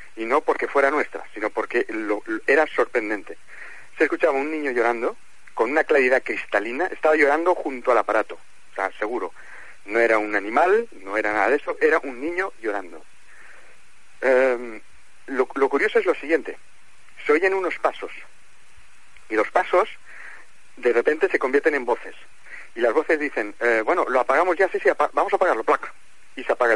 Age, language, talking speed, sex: 40-59, Spanish, 170 wpm, male